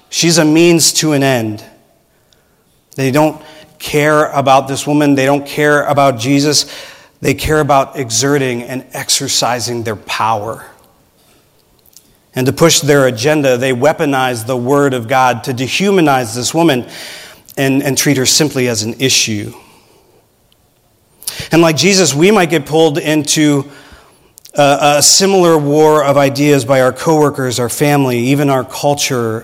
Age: 40-59